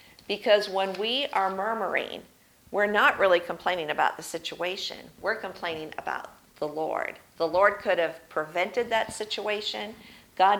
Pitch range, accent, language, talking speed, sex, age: 170-215 Hz, American, English, 140 wpm, female, 50-69